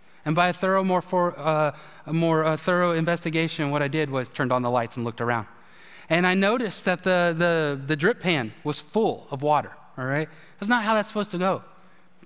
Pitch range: 160-230 Hz